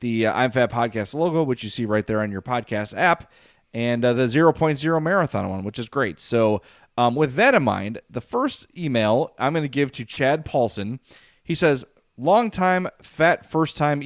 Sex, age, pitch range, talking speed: male, 30-49, 115-150 Hz, 200 wpm